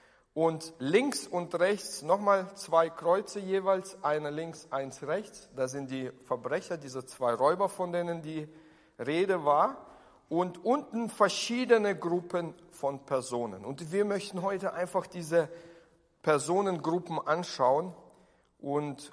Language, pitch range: German, 140-185 Hz